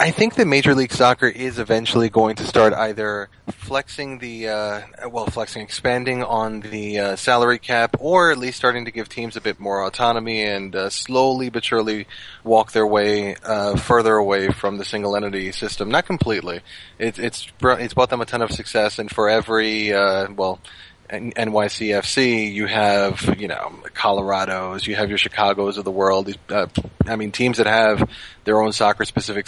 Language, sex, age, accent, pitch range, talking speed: English, male, 20-39, American, 105-120 Hz, 185 wpm